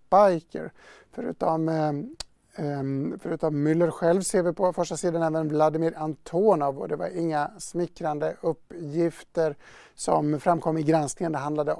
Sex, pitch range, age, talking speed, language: male, 155-185 Hz, 50-69, 120 wpm, English